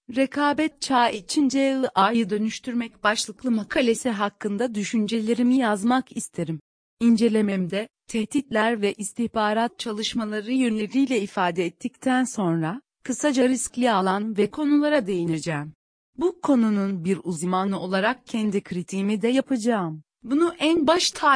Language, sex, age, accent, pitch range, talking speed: Turkish, female, 40-59, native, 195-255 Hz, 110 wpm